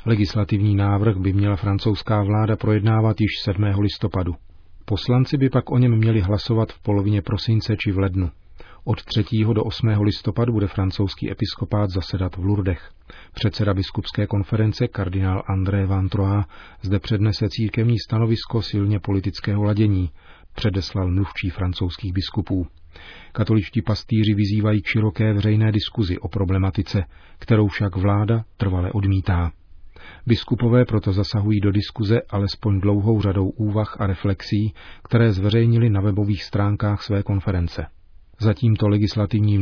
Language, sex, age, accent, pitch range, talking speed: Czech, male, 40-59, native, 95-110 Hz, 130 wpm